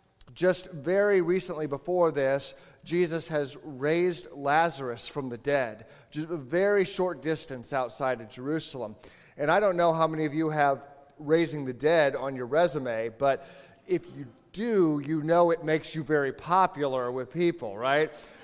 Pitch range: 145-185 Hz